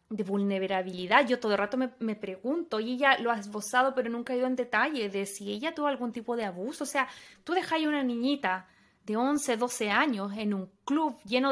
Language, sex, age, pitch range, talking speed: Spanish, female, 20-39, 220-270 Hz, 225 wpm